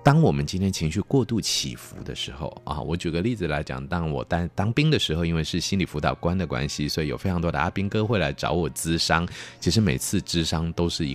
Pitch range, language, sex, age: 75-110 Hz, Chinese, male, 30-49